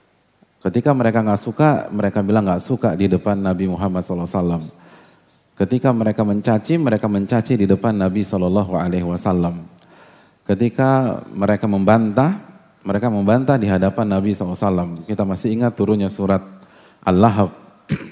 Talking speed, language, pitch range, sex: 125 wpm, Indonesian, 95-115 Hz, male